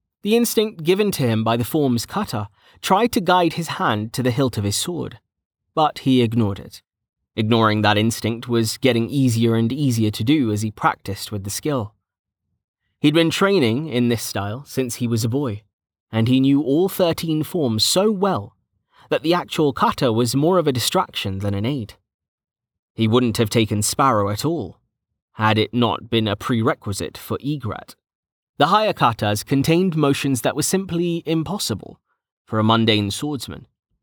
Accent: British